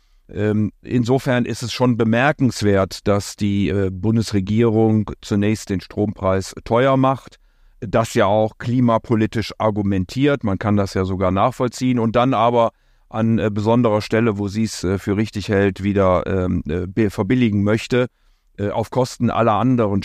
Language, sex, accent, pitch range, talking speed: German, male, German, 95-115 Hz, 130 wpm